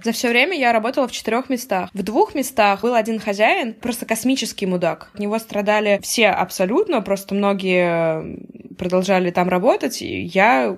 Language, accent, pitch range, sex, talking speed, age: Russian, native, 180-220 Hz, female, 160 wpm, 20-39